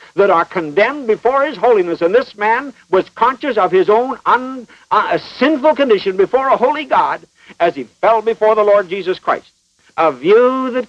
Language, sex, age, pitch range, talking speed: English, male, 60-79, 175-235 Hz, 175 wpm